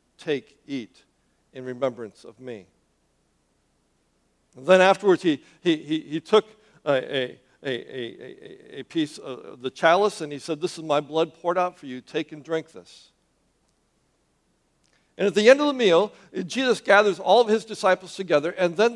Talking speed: 170 wpm